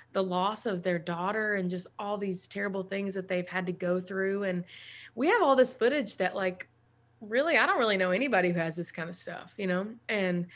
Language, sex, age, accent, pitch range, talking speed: English, female, 20-39, American, 180-225 Hz, 225 wpm